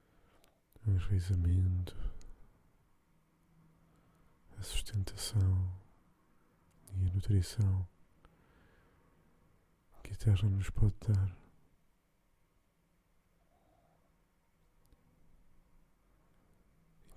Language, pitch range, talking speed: Portuguese, 90-100 Hz, 45 wpm